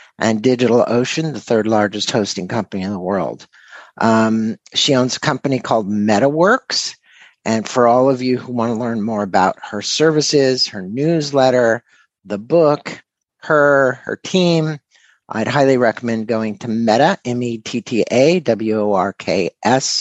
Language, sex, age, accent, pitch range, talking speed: English, male, 50-69, American, 115-145 Hz, 130 wpm